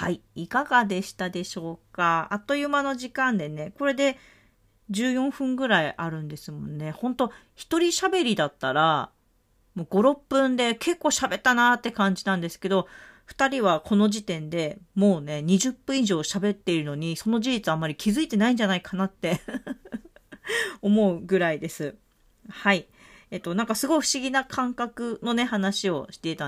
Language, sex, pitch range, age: Japanese, female, 170-245 Hz, 40-59